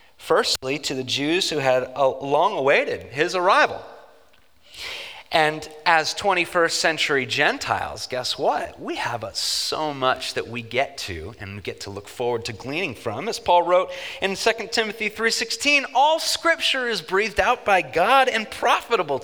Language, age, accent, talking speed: English, 30-49, American, 155 wpm